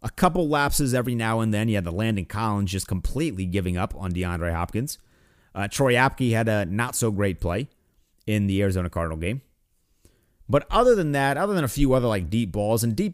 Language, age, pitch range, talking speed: English, 30-49, 95-125 Hz, 205 wpm